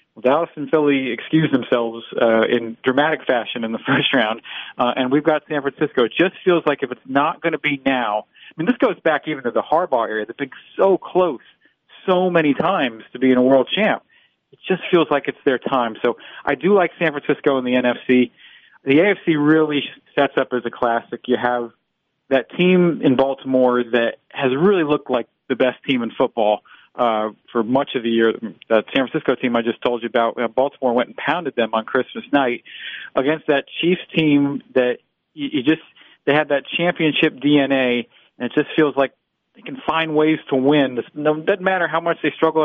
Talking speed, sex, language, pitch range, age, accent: 205 wpm, male, English, 125-155 Hz, 40-59, American